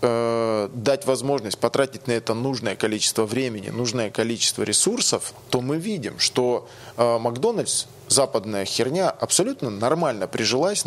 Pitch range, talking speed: 115-135 Hz, 115 wpm